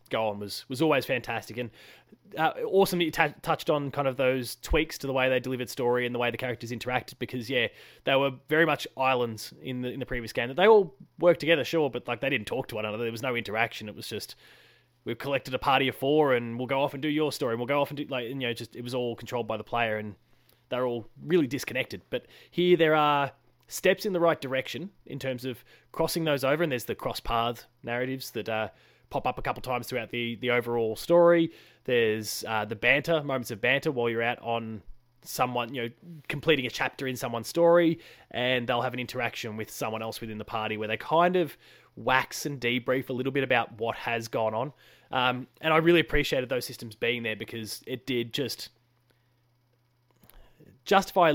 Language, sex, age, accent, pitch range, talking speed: English, male, 20-39, Australian, 115-140 Hz, 225 wpm